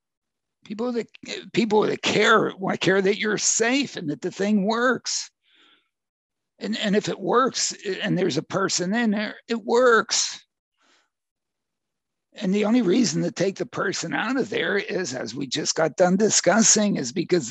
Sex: male